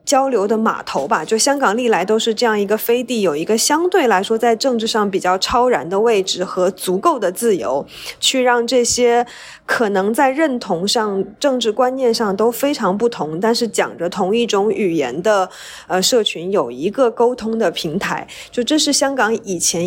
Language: Chinese